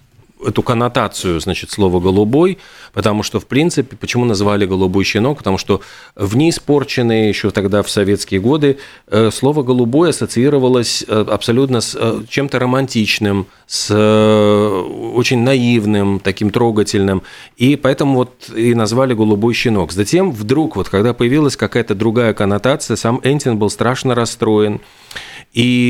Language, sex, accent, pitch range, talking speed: Russian, male, native, 100-120 Hz, 130 wpm